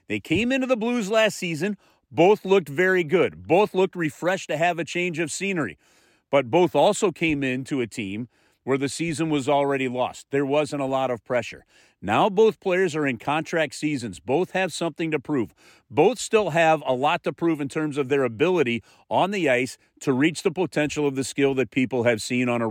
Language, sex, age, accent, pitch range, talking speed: English, male, 40-59, American, 130-175 Hz, 210 wpm